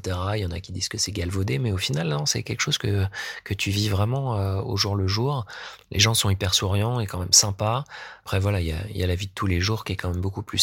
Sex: male